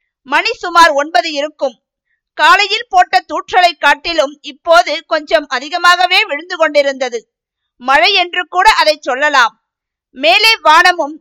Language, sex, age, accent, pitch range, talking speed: Tamil, female, 50-69, native, 295-370 Hz, 105 wpm